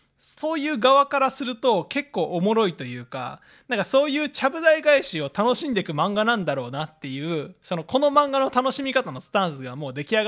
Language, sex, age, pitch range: Japanese, male, 20-39, 145-245 Hz